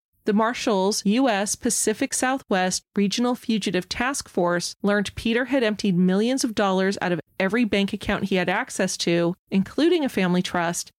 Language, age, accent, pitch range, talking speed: English, 30-49, American, 185-230 Hz, 160 wpm